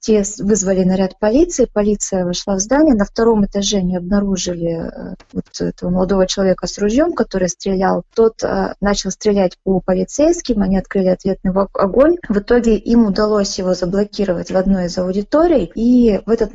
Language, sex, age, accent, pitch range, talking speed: Russian, female, 20-39, native, 185-215 Hz, 150 wpm